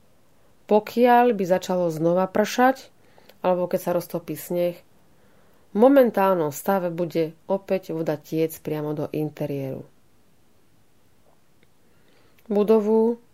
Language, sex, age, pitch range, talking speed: Slovak, female, 30-49, 175-215 Hz, 95 wpm